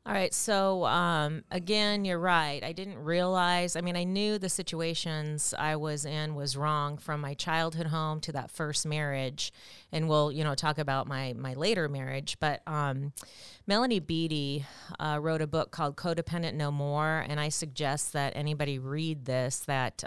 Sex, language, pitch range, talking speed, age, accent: female, English, 140-165 Hz, 175 wpm, 30-49, American